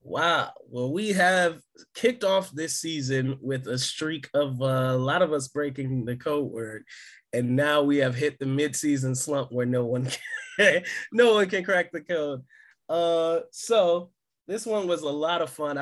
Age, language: 20-39, English